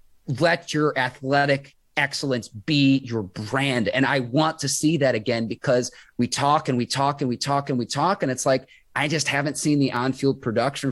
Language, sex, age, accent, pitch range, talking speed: English, male, 30-49, American, 115-140 Hz, 200 wpm